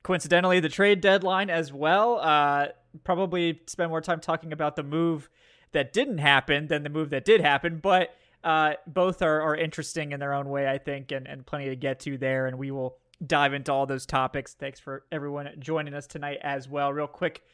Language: English